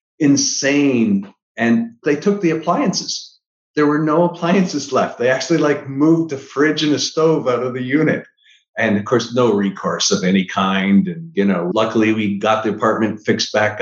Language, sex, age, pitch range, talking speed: English, male, 50-69, 110-140 Hz, 180 wpm